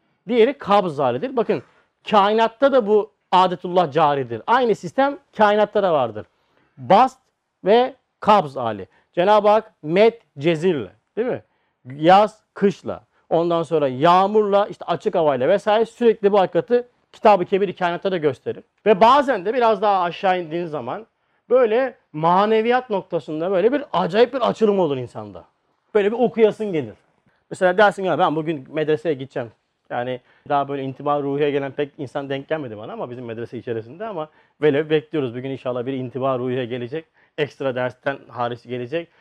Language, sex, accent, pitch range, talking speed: Turkish, male, native, 145-220 Hz, 150 wpm